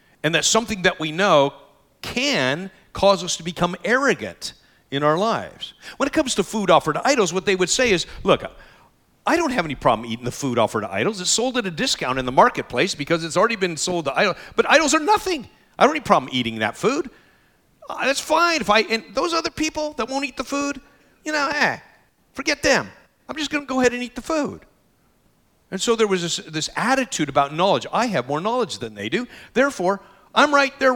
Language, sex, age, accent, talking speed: English, male, 50-69, American, 225 wpm